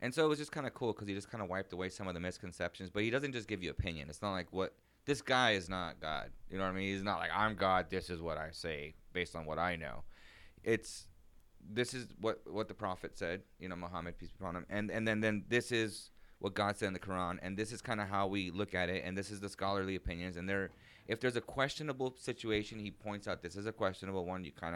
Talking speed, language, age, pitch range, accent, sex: 285 wpm, English, 30-49, 85-105 Hz, American, male